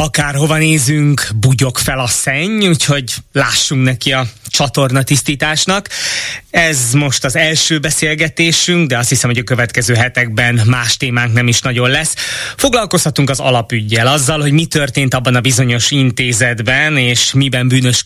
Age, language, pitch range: 20-39, Hungarian, 120-140 Hz